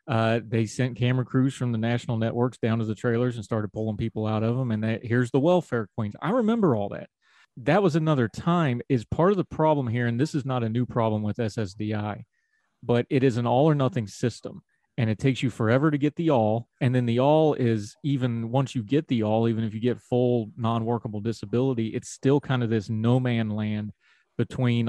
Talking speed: 225 wpm